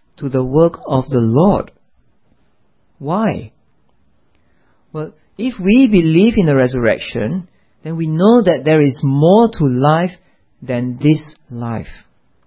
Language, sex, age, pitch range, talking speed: English, male, 40-59, 130-170 Hz, 125 wpm